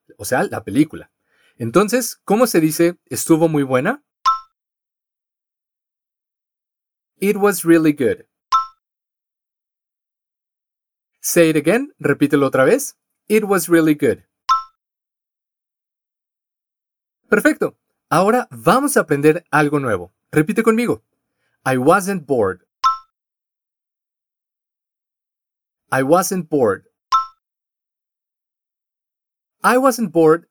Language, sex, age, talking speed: Spanish, male, 30-49, 85 wpm